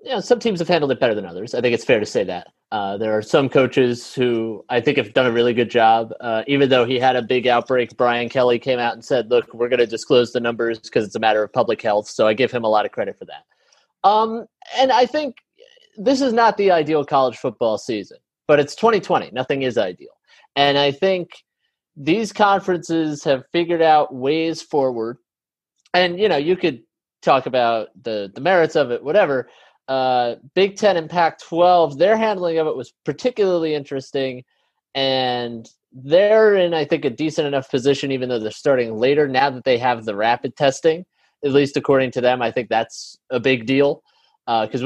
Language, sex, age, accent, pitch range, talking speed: English, male, 30-49, American, 125-175 Hz, 205 wpm